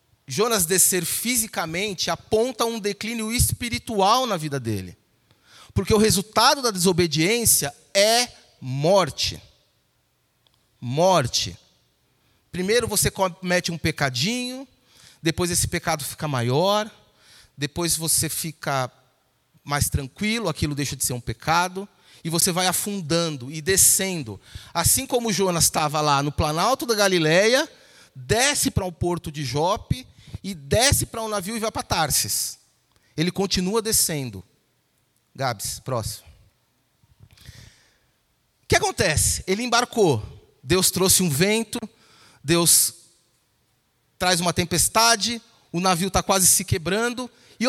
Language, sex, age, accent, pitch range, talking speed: Portuguese, male, 30-49, Brazilian, 135-200 Hz, 120 wpm